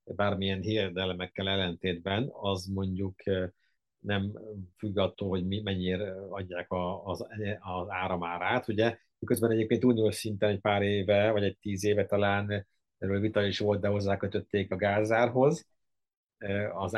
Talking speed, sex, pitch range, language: 130 wpm, male, 100-115 Hz, Hungarian